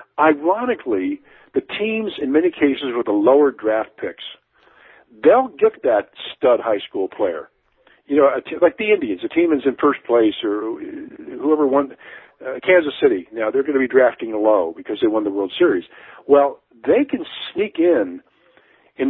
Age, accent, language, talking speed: 50-69, American, English, 175 wpm